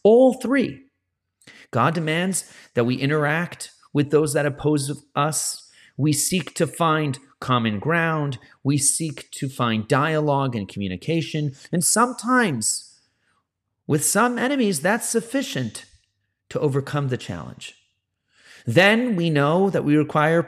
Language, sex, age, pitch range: English, male, 40-59, 130-170 Hz